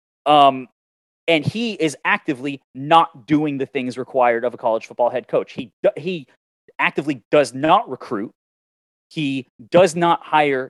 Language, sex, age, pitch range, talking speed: English, male, 30-49, 130-165 Hz, 145 wpm